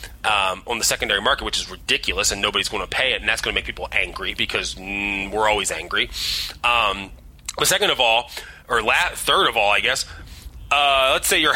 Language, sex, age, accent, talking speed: English, male, 30-49, American, 215 wpm